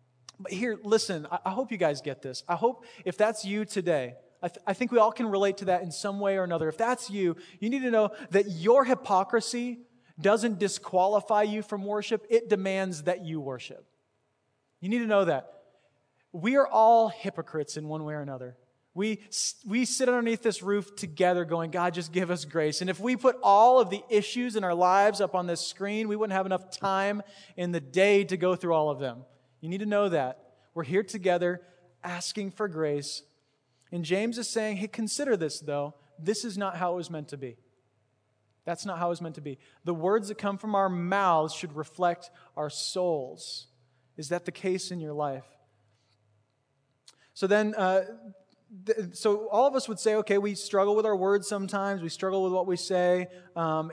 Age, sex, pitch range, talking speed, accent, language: 20-39, male, 160-210 Hz, 205 wpm, American, English